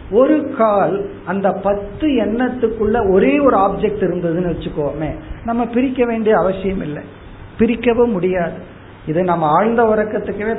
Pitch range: 160-230 Hz